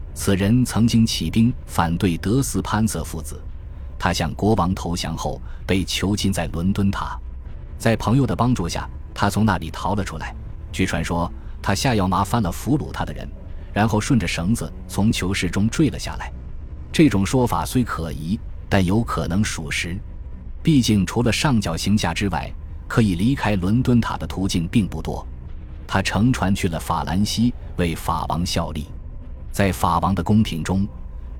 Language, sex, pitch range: Chinese, male, 80-110 Hz